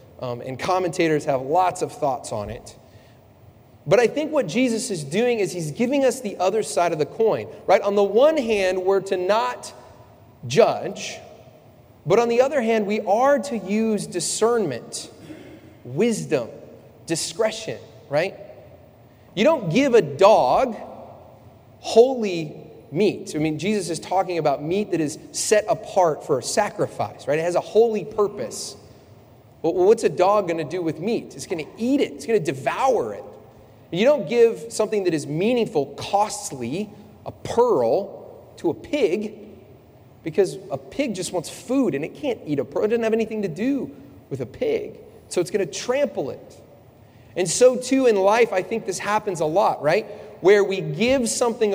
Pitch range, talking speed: 150-225 Hz, 175 wpm